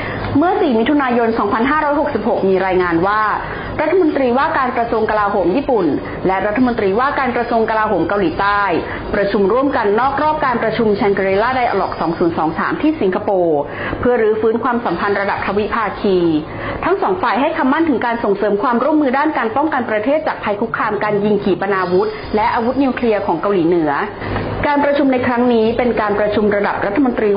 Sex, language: female, Thai